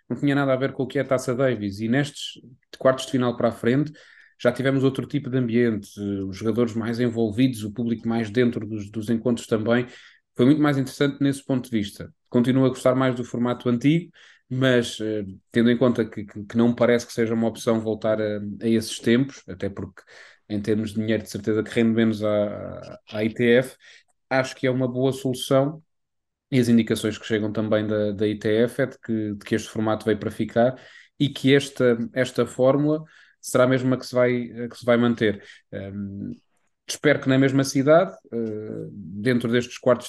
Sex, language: male, Portuguese